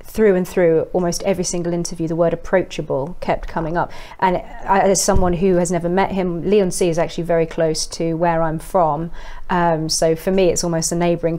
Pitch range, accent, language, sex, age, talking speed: 165-185 Hz, British, English, female, 30-49, 205 wpm